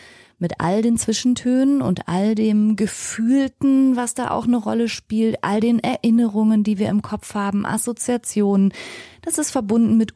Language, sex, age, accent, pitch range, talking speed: German, female, 30-49, German, 180-235 Hz, 160 wpm